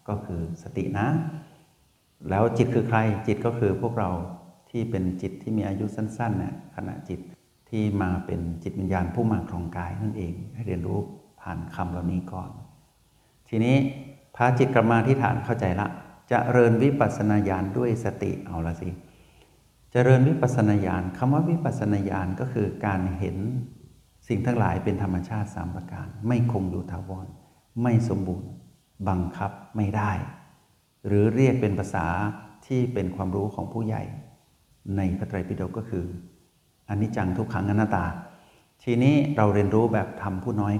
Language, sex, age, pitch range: Thai, male, 60-79, 95-120 Hz